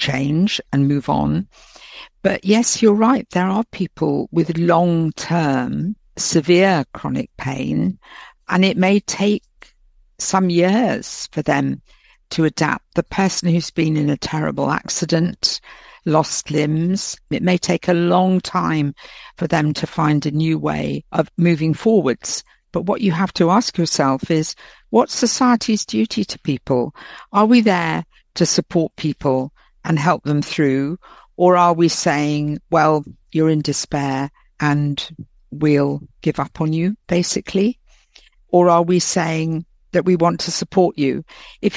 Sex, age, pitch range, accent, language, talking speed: female, 60-79, 150-185 Hz, British, English, 145 wpm